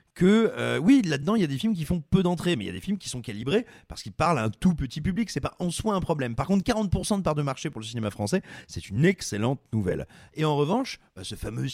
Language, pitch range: French, 105-165 Hz